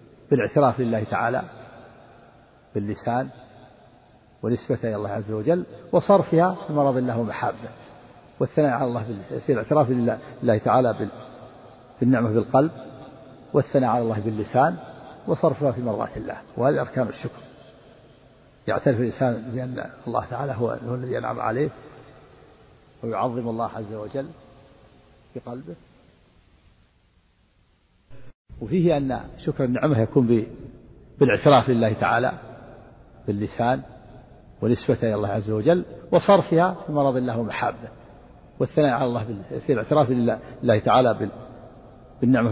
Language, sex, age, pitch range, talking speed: Arabic, male, 50-69, 115-135 Hz, 110 wpm